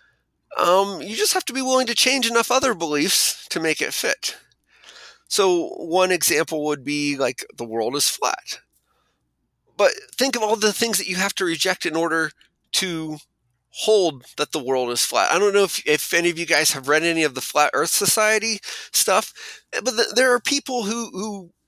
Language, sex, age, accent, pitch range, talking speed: English, male, 30-49, American, 155-220 Hz, 195 wpm